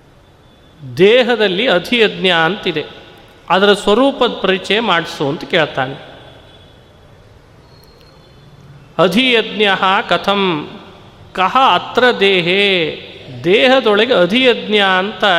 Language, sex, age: Kannada, male, 30-49